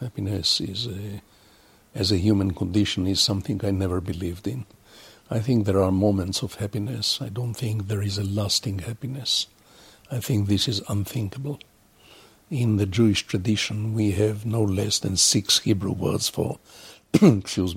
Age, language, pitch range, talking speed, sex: 60-79, English, 100-110 Hz, 160 wpm, male